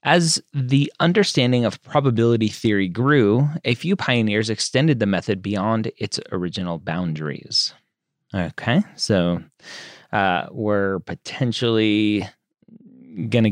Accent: American